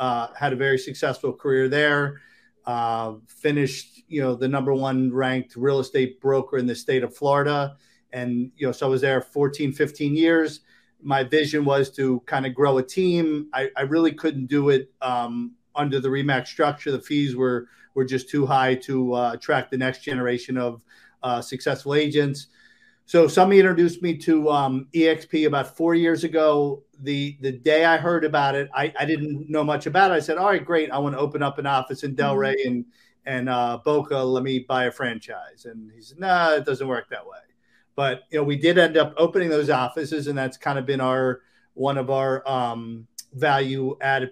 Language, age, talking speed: English, 40-59, 200 wpm